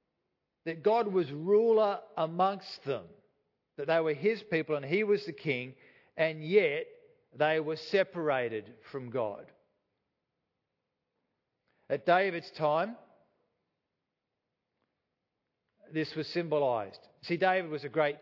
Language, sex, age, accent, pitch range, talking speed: English, male, 40-59, Australian, 150-185 Hz, 110 wpm